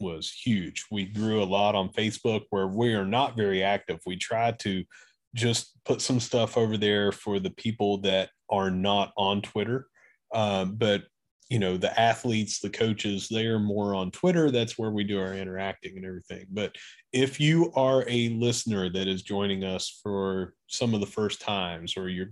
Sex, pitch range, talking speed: male, 95-115 Hz, 190 wpm